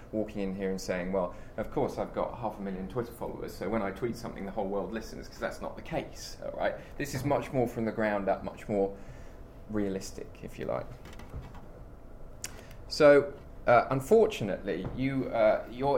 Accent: British